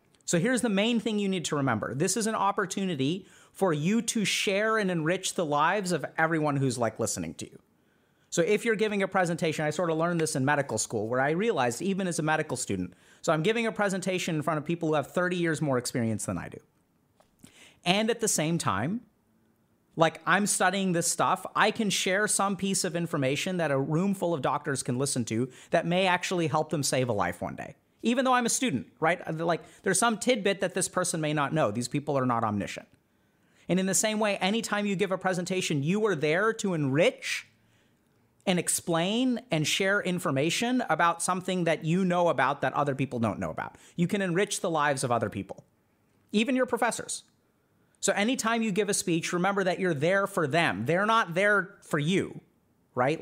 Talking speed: 210 wpm